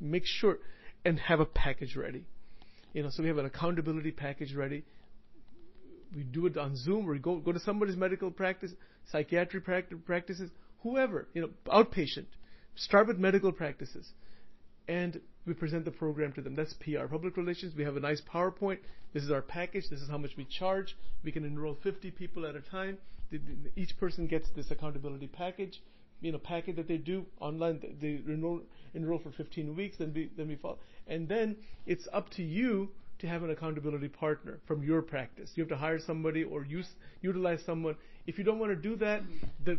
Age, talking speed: 40-59, 190 wpm